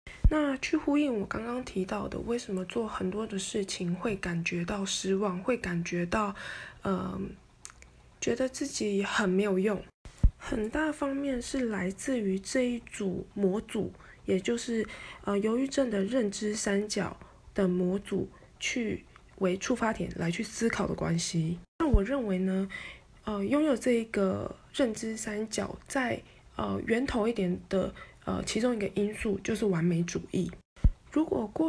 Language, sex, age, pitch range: Chinese, female, 20-39, 190-235 Hz